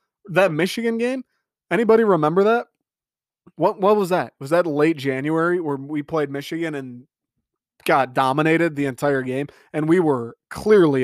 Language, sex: English, male